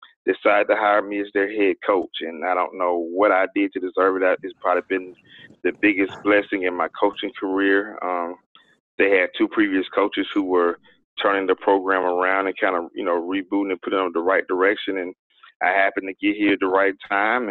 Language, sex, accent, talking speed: English, male, American, 215 wpm